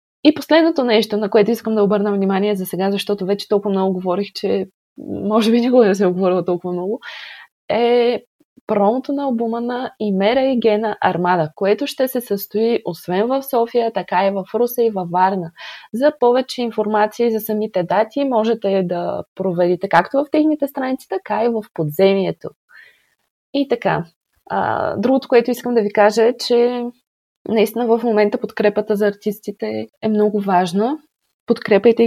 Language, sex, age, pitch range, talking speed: Bulgarian, female, 20-39, 200-240 Hz, 165 wpm